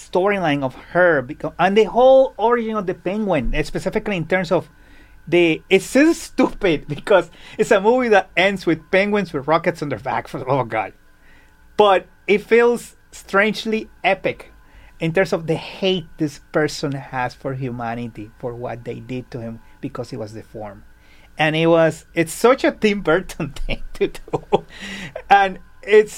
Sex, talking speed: male, 165 wpm